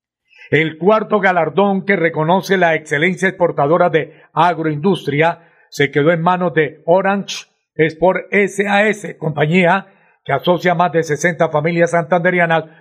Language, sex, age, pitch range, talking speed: Spanish, male, 50-69, 150-180 Hz, 125 wpm